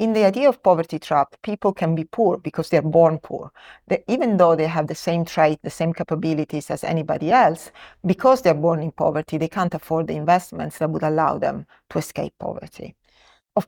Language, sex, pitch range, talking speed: English, female, 160-200 Hz, 205 wpm